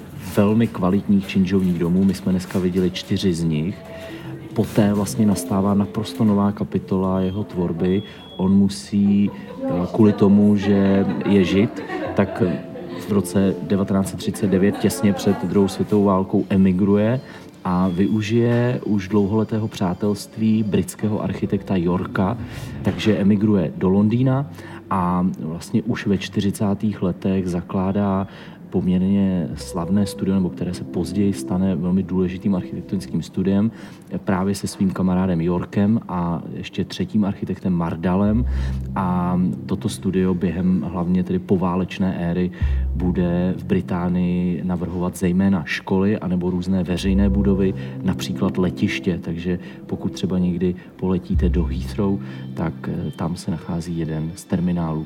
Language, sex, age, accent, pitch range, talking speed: Czech, male, 30-49, native, 90-100 Hz, 120 wpm